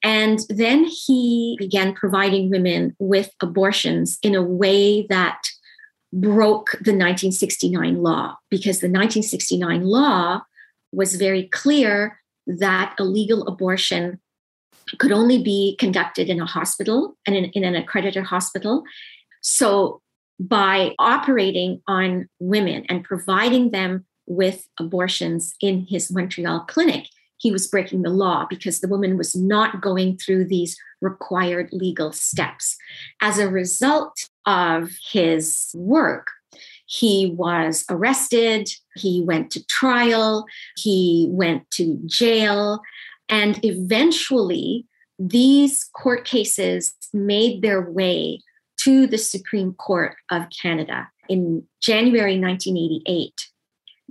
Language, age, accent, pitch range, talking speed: English, 40-59, American, 180-225 Hz, 115 wpm